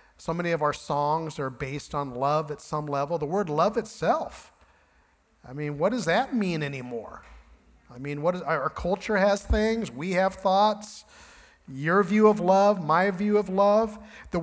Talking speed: 170 wpm